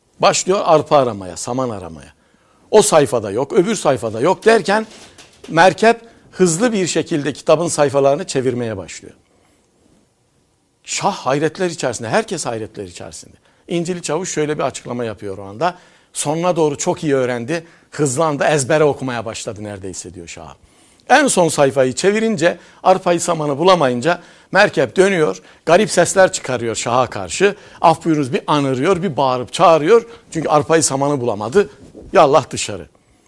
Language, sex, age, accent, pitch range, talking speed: Turkish, male, 60-79, native, 120-180 Hz, 135 wpm